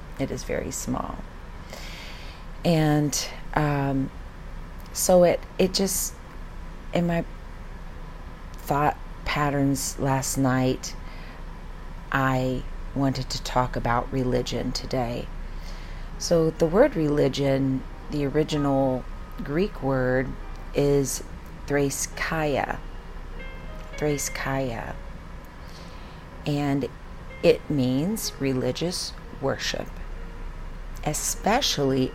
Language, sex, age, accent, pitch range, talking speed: English, female, 40-59, American, 90-145 Hz, 75 wpm